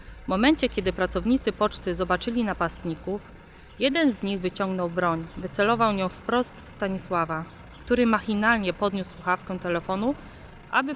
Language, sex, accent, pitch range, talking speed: Polish, female, native, 175-205 Hz, 125 wpm